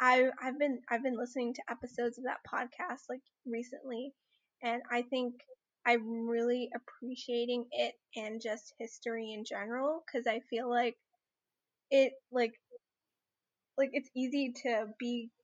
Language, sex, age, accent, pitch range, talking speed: English, female, 10-29, American, 220-250 Hz, 135 wpm